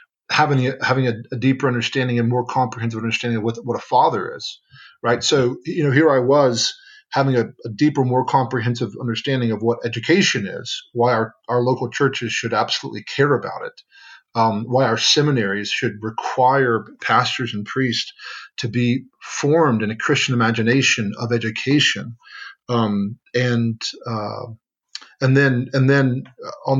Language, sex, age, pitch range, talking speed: English, male, 40-59, 115-130 Hz, 160 wpm